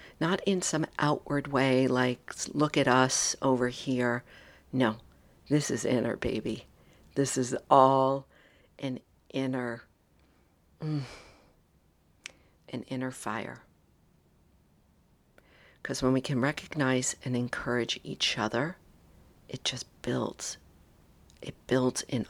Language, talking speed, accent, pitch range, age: English, 110 wpm, American, 110-140 Hz, 50-69